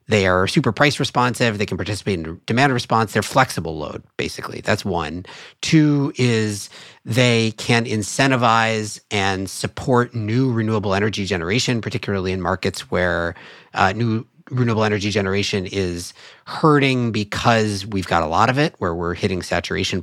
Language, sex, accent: English, male, American